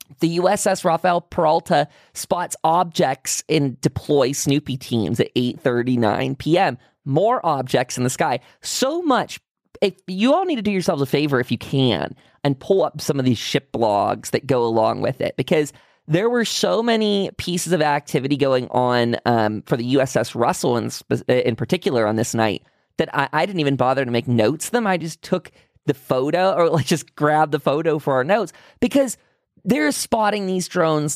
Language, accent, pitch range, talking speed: English, American, 130-185 Hz, 185 wpm